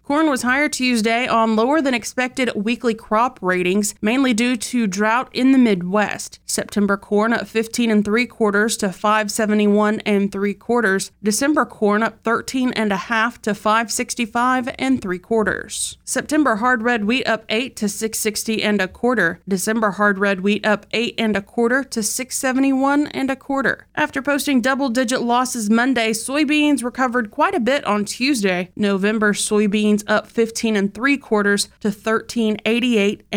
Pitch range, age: 205-240 Hz, 30-49